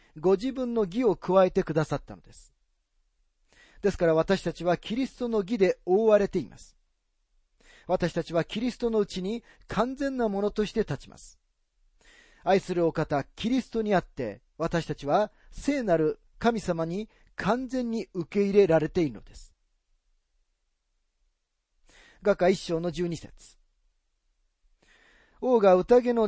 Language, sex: Japanese, male